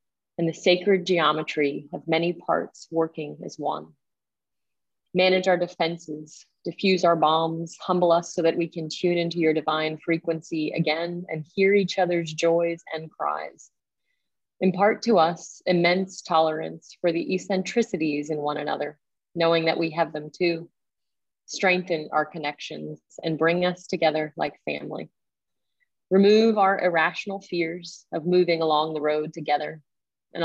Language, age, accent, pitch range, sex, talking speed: English, 30-49, American, 160-185 Hz, female, 140 wpm